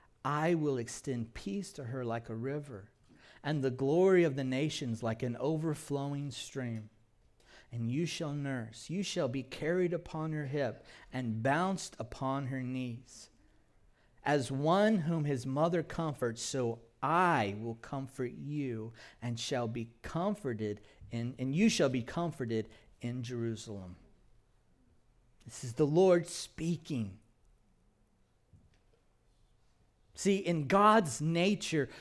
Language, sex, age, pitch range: English, male, 40-59, 115-170 Hz